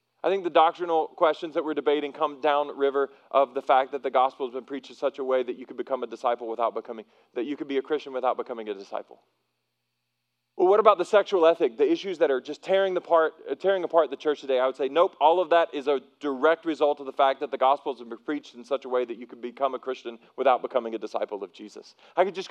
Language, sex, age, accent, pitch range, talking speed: English, male, 40-59, American, 125-160 Hz, 260 wpm